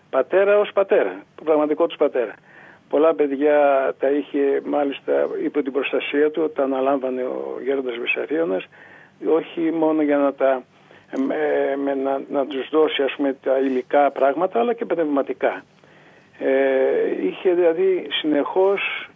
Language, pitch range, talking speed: Greek, 135-165 Hz, 135 wpm